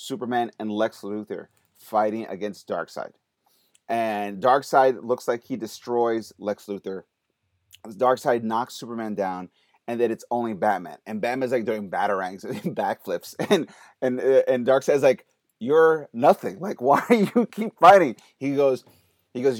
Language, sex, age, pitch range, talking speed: English, male, 30-49, 110-135 Hz, 145 wpm